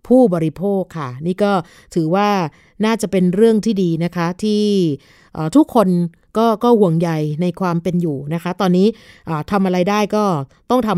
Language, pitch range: Thai, 170-210 Hz